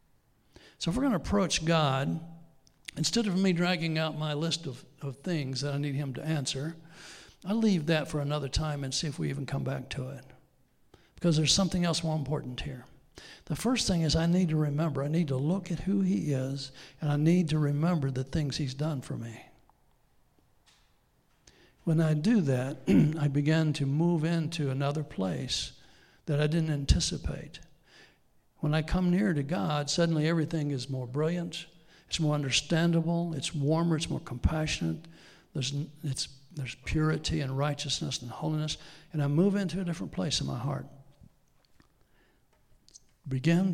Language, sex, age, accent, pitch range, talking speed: English, male, 60-79, American, 140-170 Hz, 170 wpm